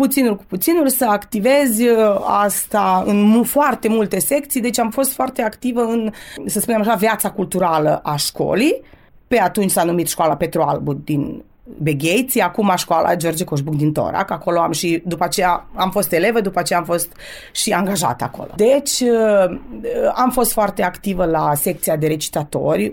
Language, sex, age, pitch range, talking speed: Romanian, female, 20-39, 165-215 Hz, 160 wpm